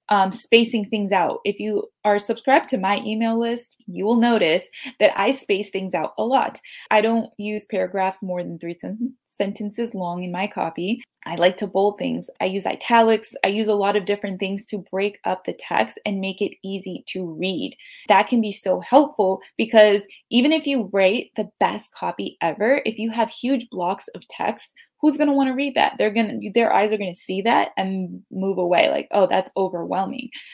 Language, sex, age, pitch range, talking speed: English, female, 20-39, 195-235 Hz, 205 wpm